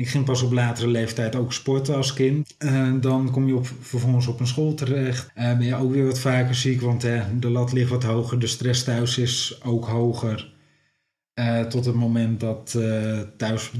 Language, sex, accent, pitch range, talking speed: Dutch, male, Dutch, 120-135 Hz, 210 wpm